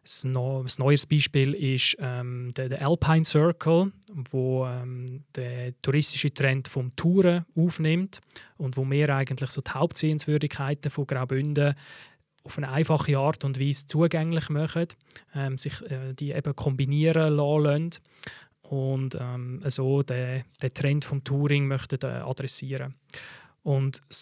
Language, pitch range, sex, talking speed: German, 135-150 Hz, male, 135 wpm